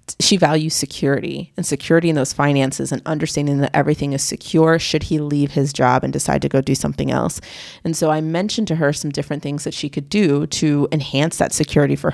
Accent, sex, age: American, female, 30-49